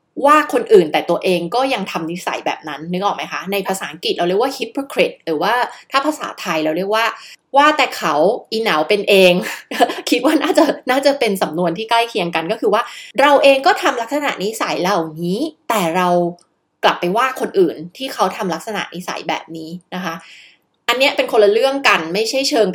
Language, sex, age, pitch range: Thai, female, 20-39, 175-255 Hz